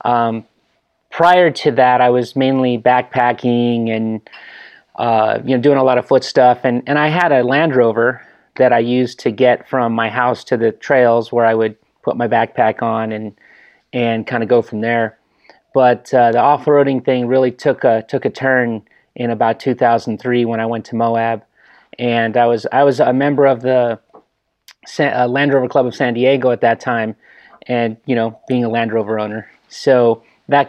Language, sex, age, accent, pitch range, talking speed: English, male, 30-49, American, 115-130 Hz, 190 wpm